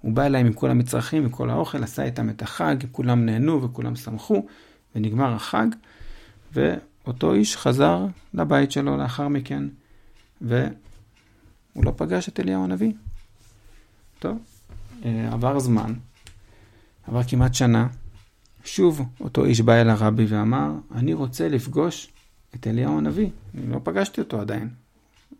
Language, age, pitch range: Hebrew, 50-69, 100-130 Hz